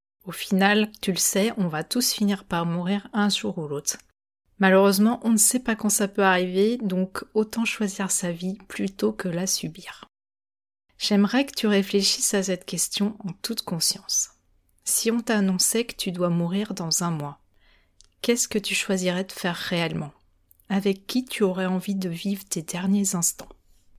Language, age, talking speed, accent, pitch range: French, 30-49, 175 wpm, French, 175-215 Hz